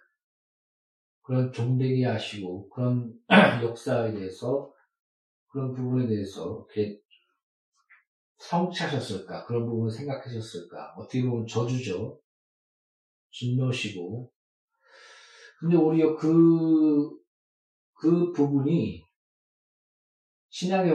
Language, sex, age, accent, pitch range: Korean, male, 40-59, native, 120-150 Hz